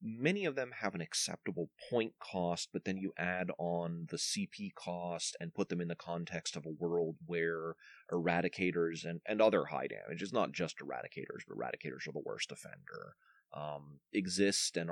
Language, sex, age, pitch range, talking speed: English, male, 30-49, 85-110 Hz, 175 wpm